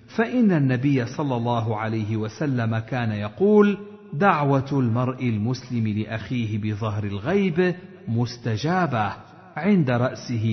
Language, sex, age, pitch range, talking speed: Arabic, male, 50-69, 105-165 Hz, 95 wpm